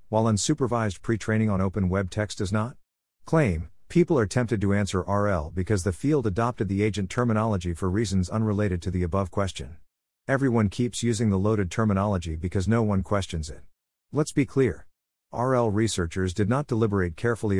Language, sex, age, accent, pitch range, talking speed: English, male, 50-69, American, 90-115 Hz, 170 wpm